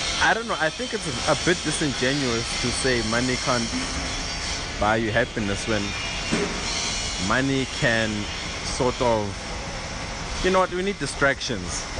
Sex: male